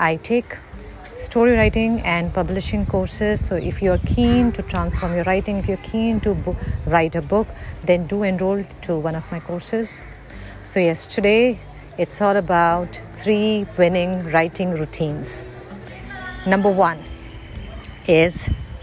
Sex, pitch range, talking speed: female, 160-205 Hz, 135 wpm